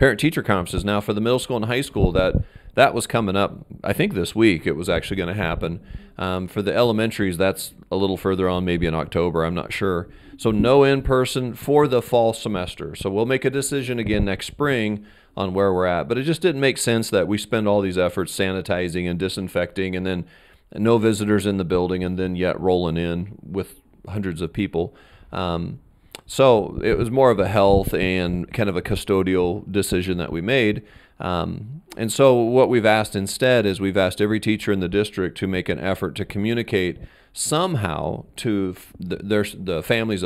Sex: male